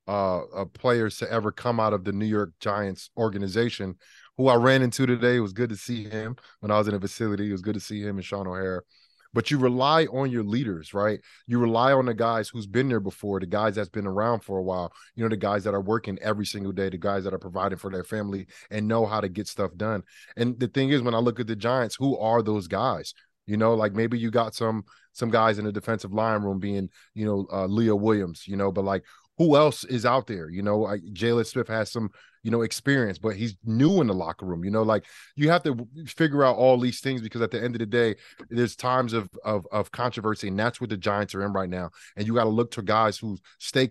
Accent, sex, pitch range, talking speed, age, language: American, male, 105-125 Hz, 260 wpm, 20-39, English